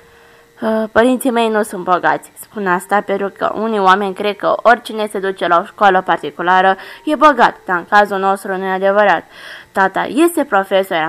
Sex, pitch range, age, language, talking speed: female, 185-225 Hz, 20-39, Romanian, 170 wpm